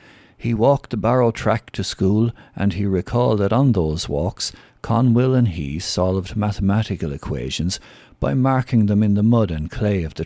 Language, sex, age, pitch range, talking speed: English, male, 60-79, 85-120 Hz, 175 wpm